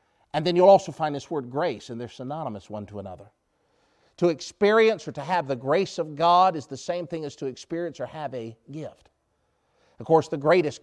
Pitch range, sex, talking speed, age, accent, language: 130-165 Hz, male, 210 wpm, 50-69, American, English